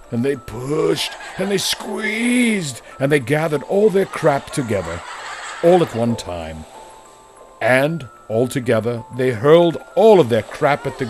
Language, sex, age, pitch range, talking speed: English, male, 60-79, 110-150 Hz, 150 wpm